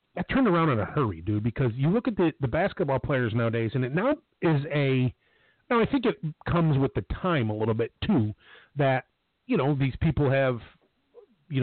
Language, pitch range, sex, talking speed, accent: English, 115-155 Hz, male, 200 wpm, American